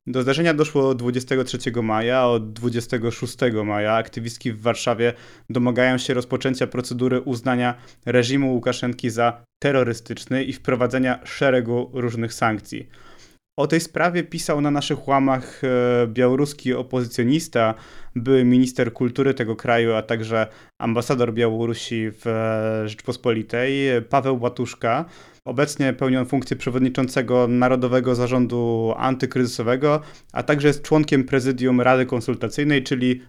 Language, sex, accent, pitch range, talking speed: Polish, male, native, 115-135 Hz, 115 wpm